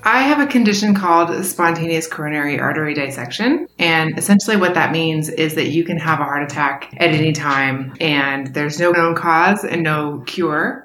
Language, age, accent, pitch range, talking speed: English, 20-39, American, 155-190 Hz, 185 wpm